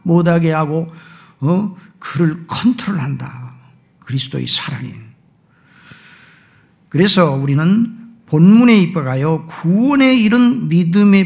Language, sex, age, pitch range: Korean, male, 50-69, 150-210 Hz